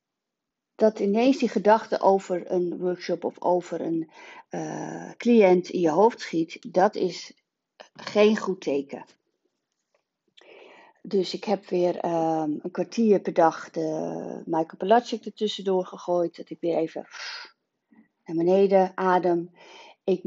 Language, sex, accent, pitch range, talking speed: Dutch, female, Dutch, 170-230 Hz, 125 wpm